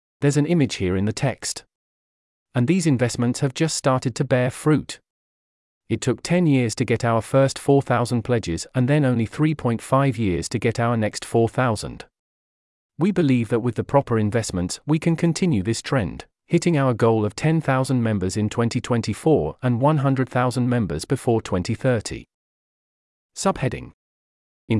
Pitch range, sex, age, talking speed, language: 110-140 Hz, male, 40-59, 150 wpm, English